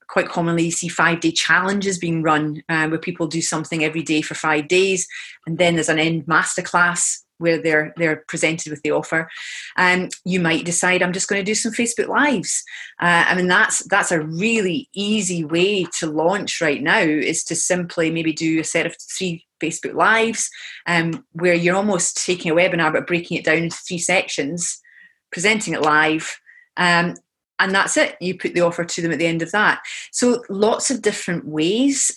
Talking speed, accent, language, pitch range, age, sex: 190 wpm, British, English, 165-190 Hz, 30-49, female